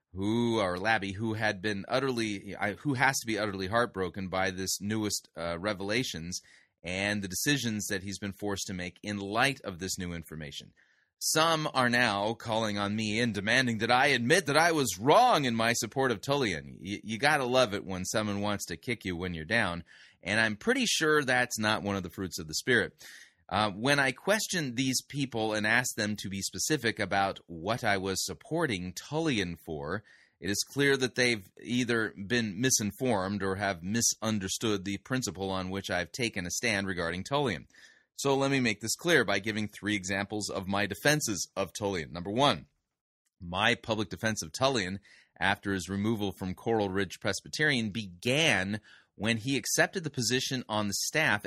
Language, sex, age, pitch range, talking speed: English, male, 30-49, 95-125 Hz, 185 wpm